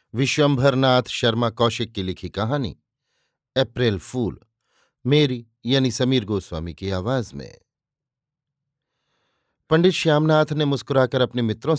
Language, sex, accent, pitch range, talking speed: Hindi, male, native, 120-150 Hz, 105 wpm